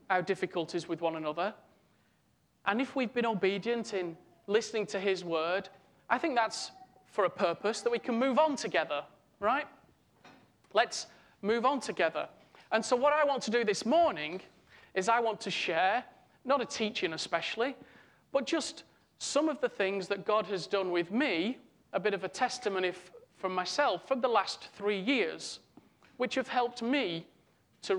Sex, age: male, 40-59